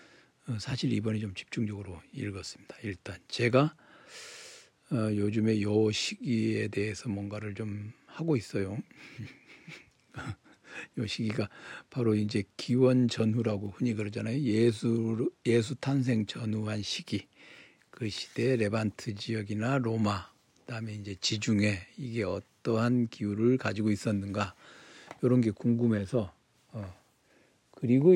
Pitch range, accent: 105-125 Hz, native